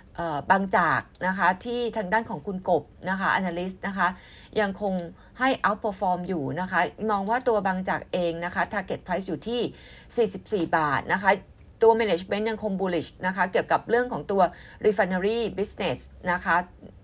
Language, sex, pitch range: Thai, female, 170-225 Hz